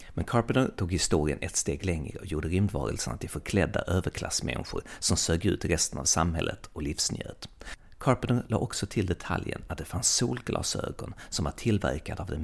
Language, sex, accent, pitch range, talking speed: Swedish, male, native, 85-110 Hz, 170 wpm